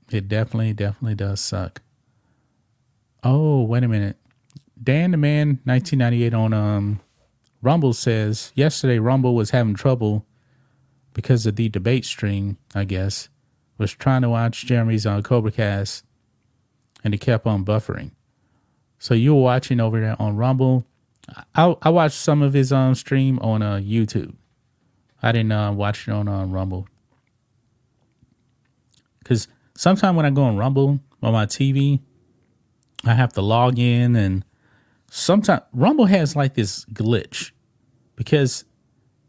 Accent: American